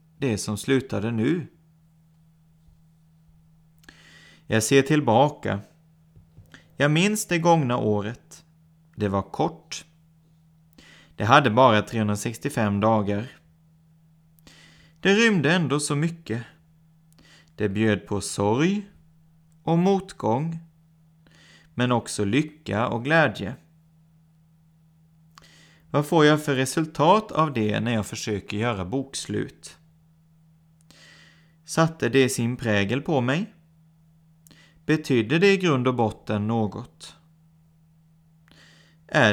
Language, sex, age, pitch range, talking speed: Swedish, male, 30-49, 115-160 Hz, 95 wpm